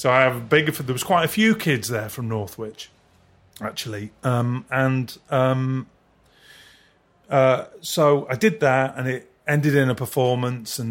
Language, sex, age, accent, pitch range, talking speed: English, male, 30-49, British, 110-150 Hz, 165 wpm